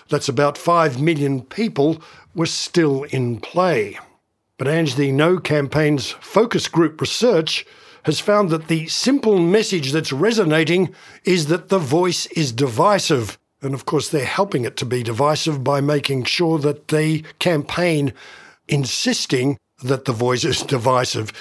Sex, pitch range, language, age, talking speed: male, 140-180 Hz, English, 60-79, 145 wpm